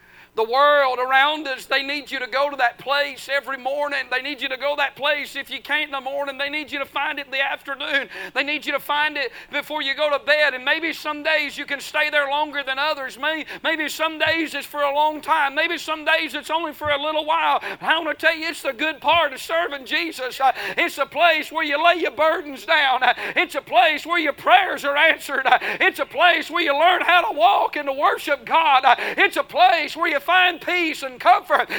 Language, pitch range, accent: English, 235-320 Hz, American